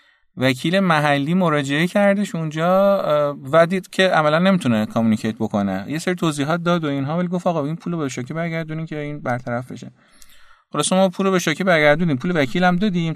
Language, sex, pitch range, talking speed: Persian, male, 130-185 Hz, 200 wpm